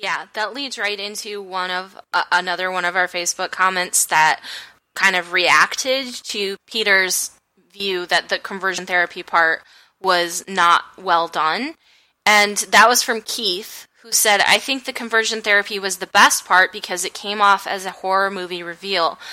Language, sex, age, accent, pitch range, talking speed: English, female, 10-29, American, 185-220 Hz, 170 wpm